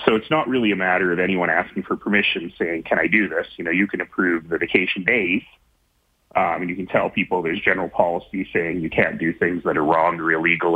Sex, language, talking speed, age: male, English, 240 wpm, 30-49